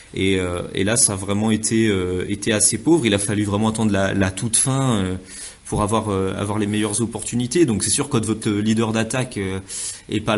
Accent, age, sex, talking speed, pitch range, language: French, 30-49, male, 230 wpm, 100-115 Hz, French